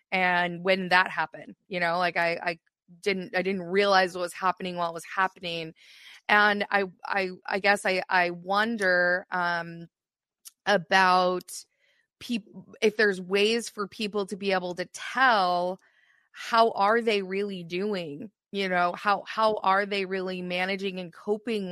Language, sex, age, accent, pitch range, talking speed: English, female, 20-39, American, 180-205 Hz, 155 wpm